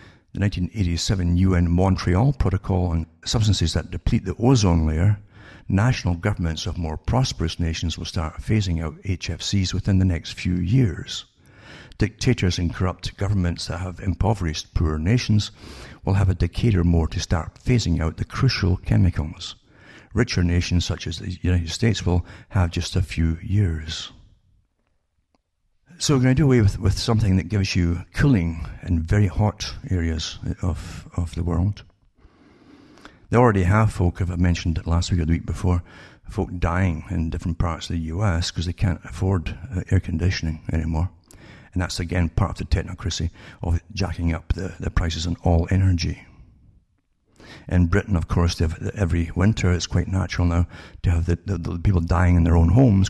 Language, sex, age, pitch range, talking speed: English, male, 60-79, 85-100 Hz, 170 wpm